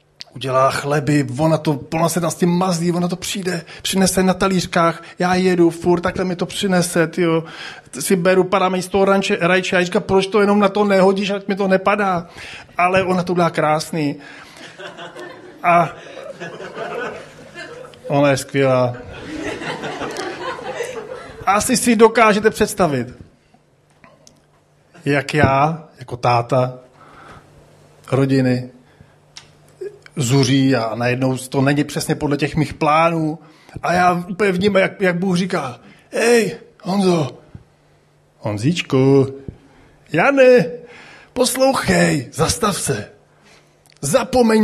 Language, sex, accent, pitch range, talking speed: Czech, male, native, 150-200 Hz, 110 wpm